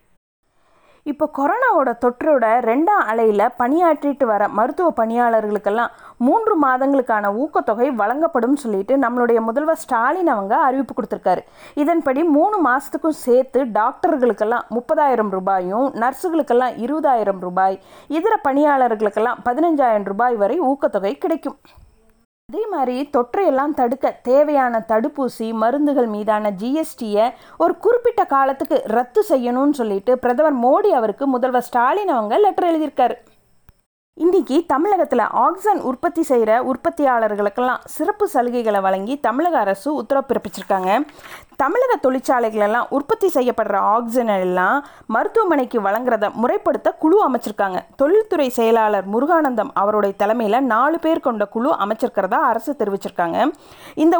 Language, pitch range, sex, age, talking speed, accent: Tamil, 225-315 Hz, female, 30-49, 105 wpm, native